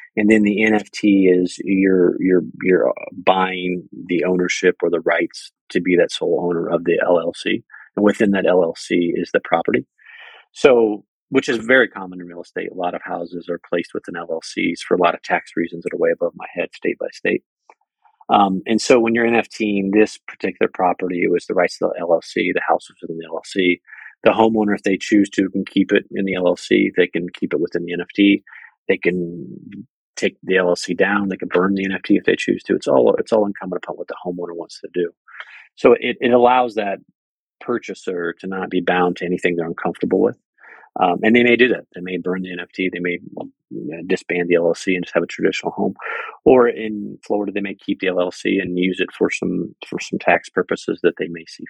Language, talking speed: English, 220 wpm